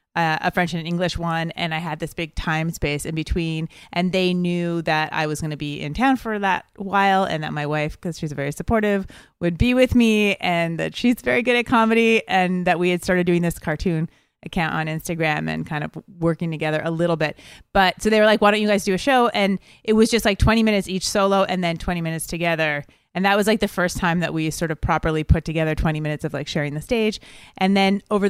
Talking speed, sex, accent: 250 wpm, female, American